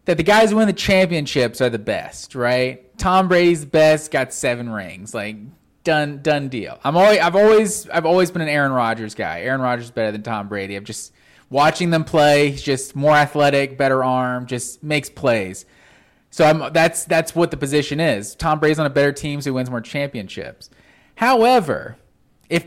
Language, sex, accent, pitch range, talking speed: English, male, American, 135-215 Hz, 195 wpm